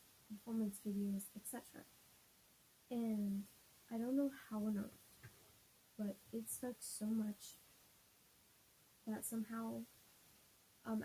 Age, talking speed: 20-39, 100 wpm